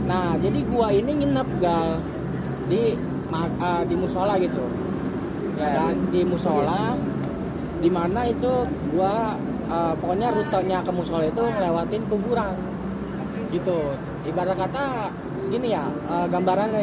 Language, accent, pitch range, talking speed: Indonesian, native, 180-210 Hz, 120 wpm